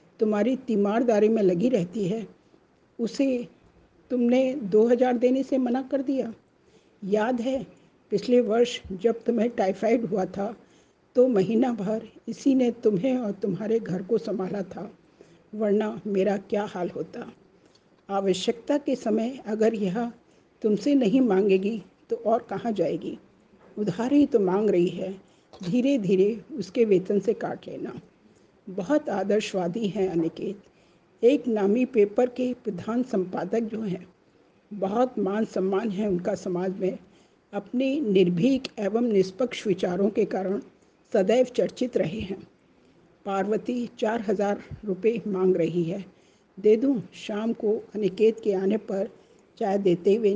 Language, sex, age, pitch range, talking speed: Hindi, female, 50-69, 195-240 Hz, 135 wpm